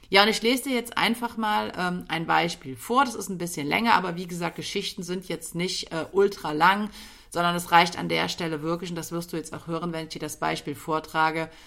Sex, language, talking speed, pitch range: female, German, 240 wpm, 160-215 Hz